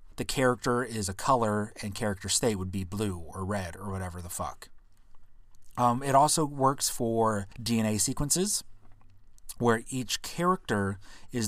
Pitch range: 95-120 Hz